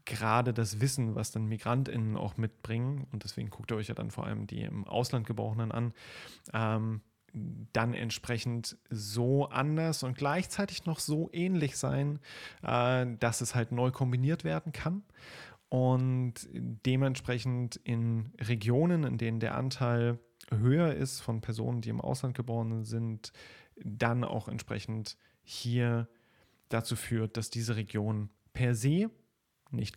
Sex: male